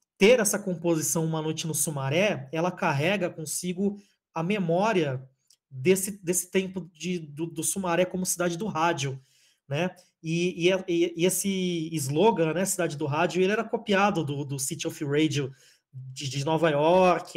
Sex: male